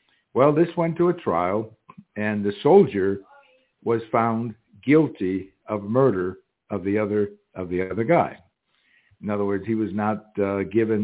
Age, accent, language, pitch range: 60-79, American, English, 100-130 Hz